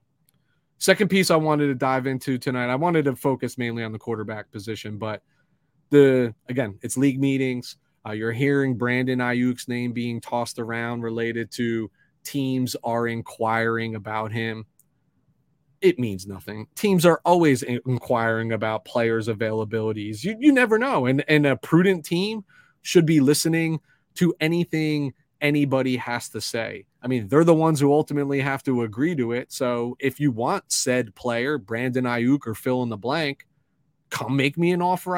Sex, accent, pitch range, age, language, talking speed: male, American, 115-150 Hz, 30-49, English, 165 wpm